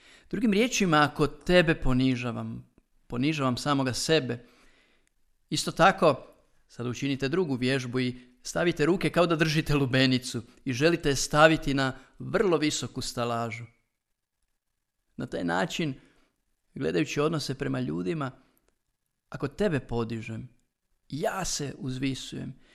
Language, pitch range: Croatian, 125-160 Hz